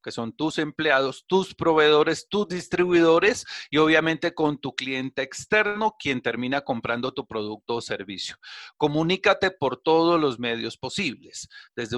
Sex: male